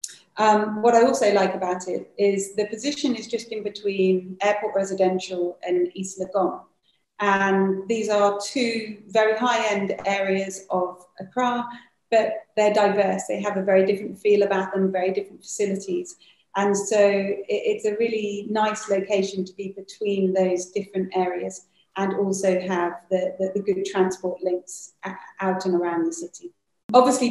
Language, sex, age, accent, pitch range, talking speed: English, female, 30-49, British, 190-215 Hz, 155 wpm